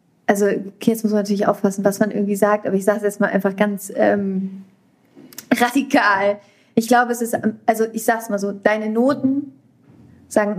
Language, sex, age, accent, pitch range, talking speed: German, female, 30-49, German, 205-245 Hz, 185 wpm